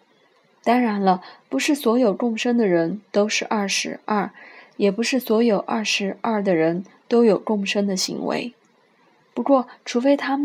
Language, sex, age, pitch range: Chinese, female, 20-39, 200-240 Hz